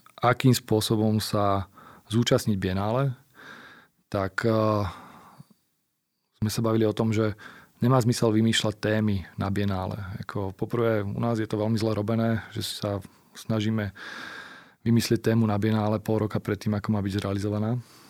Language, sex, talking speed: Slovak, male, 145 wpm